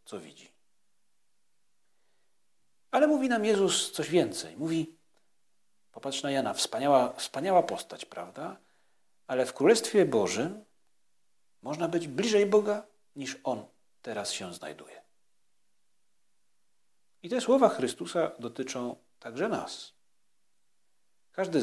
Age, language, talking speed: 40-59, Polish, 105 wpm